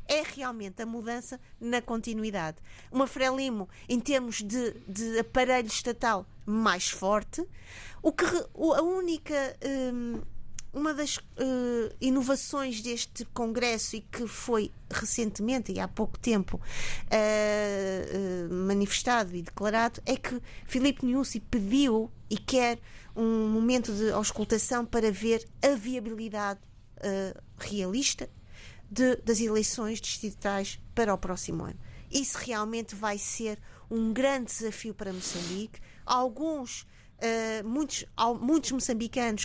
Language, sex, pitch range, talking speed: Portuguese, female, 210-255 Hz, 115 wpm